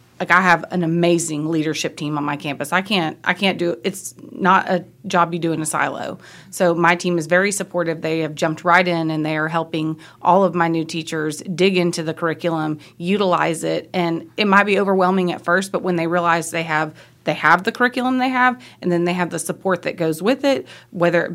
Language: English